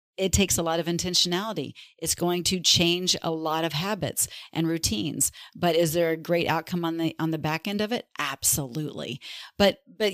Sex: female